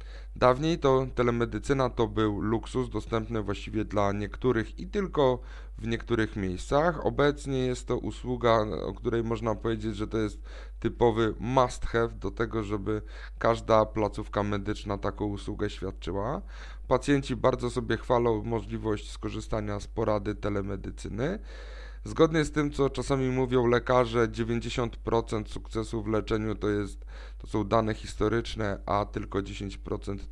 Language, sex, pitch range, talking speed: Polish, male, 100-115 Hz, 130 wpm